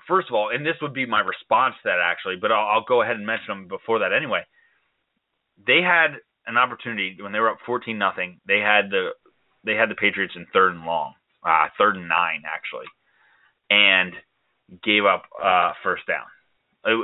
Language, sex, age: English, male, 20-39